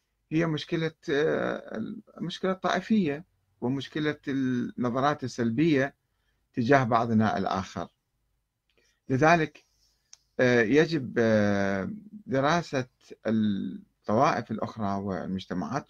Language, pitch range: Arabic, 115-145 Hz